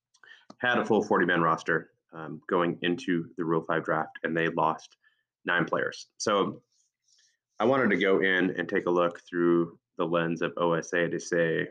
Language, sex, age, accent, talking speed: English, male, 20-39, American, 175 wpm